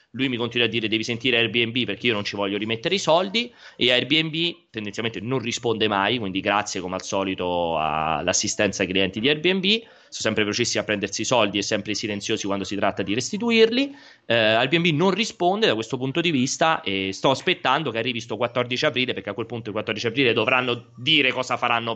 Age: 30-49